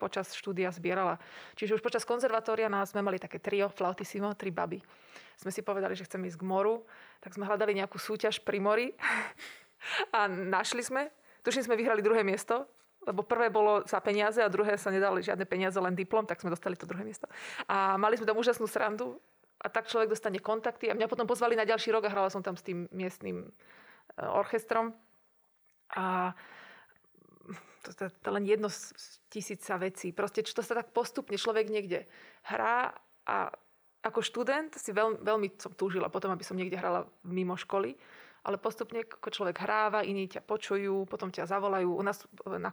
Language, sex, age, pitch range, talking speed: Slovak, female, 20-39, 190-225 Hz, 180 wpm